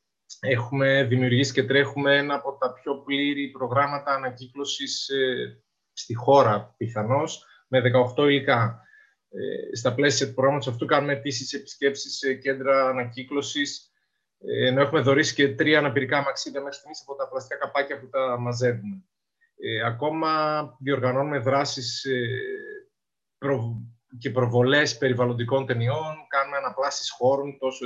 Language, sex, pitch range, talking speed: Greek, male, 130-160 Hz, 120 wpm